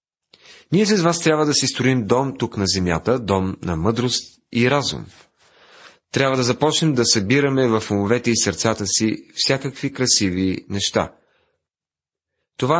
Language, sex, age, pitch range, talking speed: Bulgarian, male, 30-49, 100-130 Hz, 140 wpm